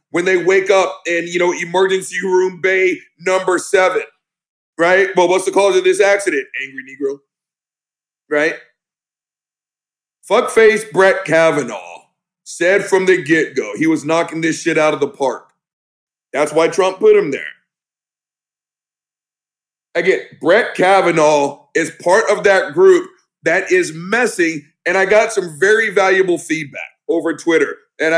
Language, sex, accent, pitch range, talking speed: English, male, American, 165-215 Hz, 140 wpm